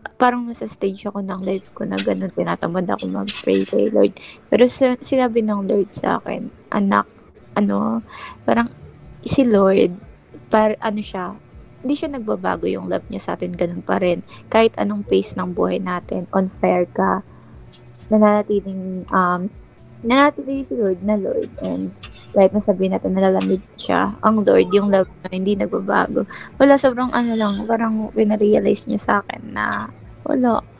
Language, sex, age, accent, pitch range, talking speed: Filipino, female, 20-39, native, 175-230 Hz, 160 wpm